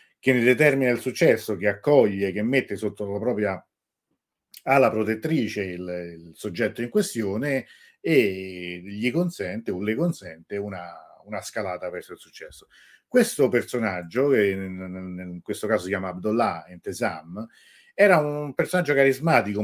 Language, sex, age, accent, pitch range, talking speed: Italian, male, 40-59, native, 95-120 Hz, 145 wpm